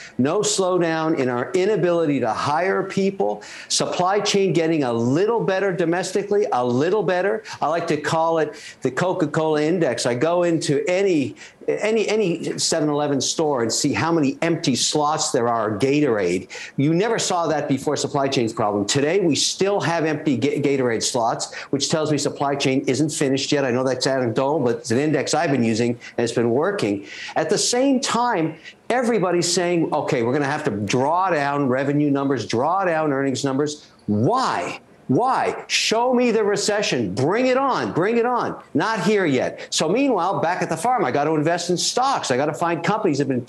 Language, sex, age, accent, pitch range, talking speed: English, male, 50-69, American, 140-190 Hz, 185 wpm